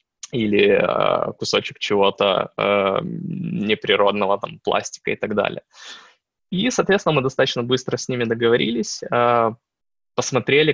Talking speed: 110 wpm